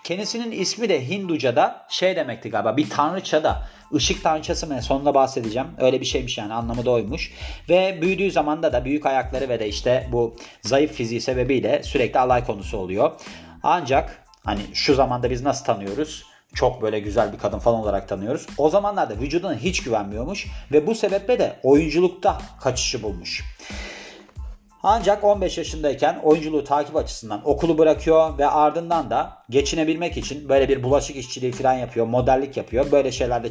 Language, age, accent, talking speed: Turkish, 40-59, native, 160 wpm